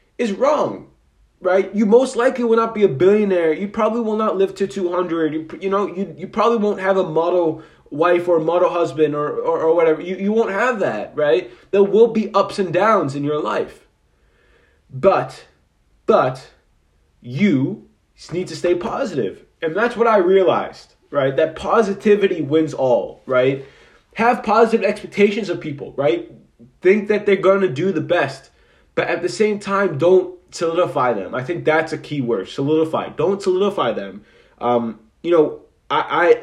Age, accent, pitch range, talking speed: 20-39, American, 150-195 Hz, 175 wpm